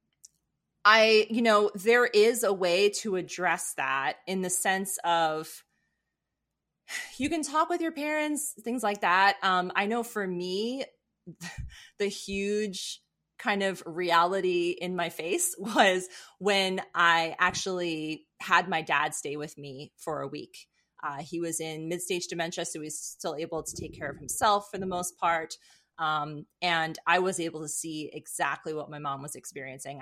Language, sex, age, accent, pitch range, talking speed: English, female, 20-39, American, 155-200 Hz, 165 wpm